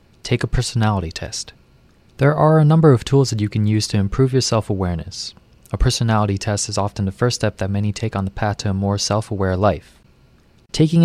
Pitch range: 100-125 Hz